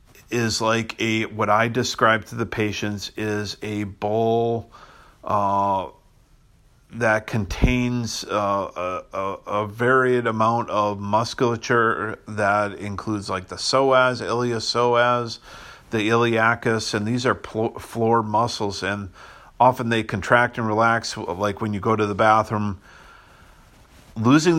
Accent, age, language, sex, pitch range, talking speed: American, 40-59, English, male, 105-120 Hz, 120 wpm